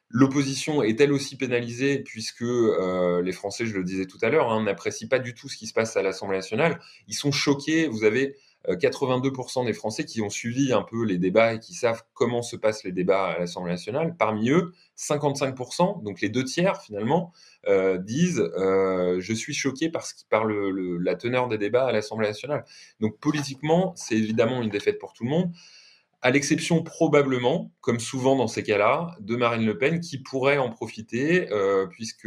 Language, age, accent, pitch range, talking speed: French, 20-39, French, 95-140 Hz, 205 wpm